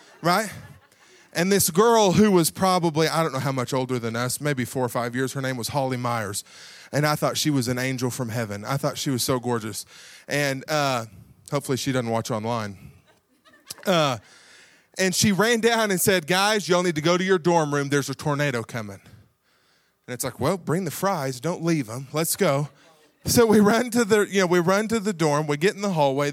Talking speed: 220 wpm